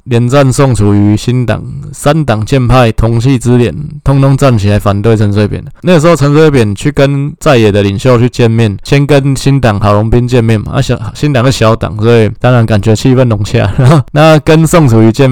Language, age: Chinese, 20-39